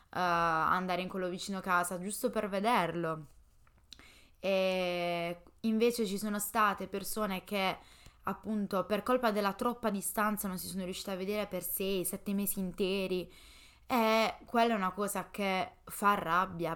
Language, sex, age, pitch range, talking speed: Italian, female, 10-29, 185-215 Hz, 145 wpm